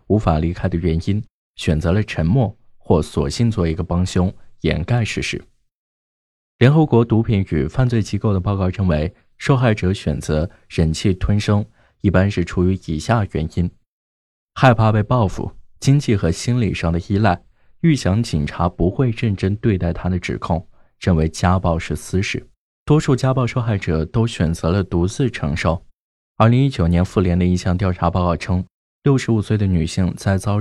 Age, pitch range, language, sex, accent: 20-39, 85-115 Hz, Chinese, male, native